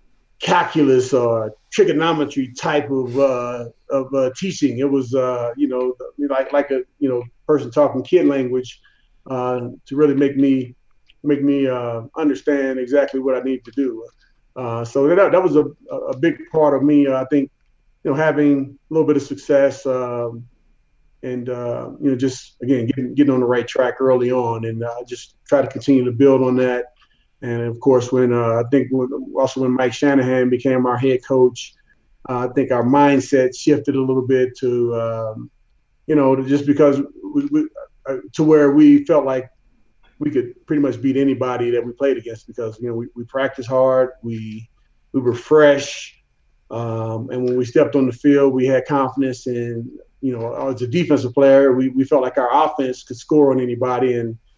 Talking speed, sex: 190 wpm, male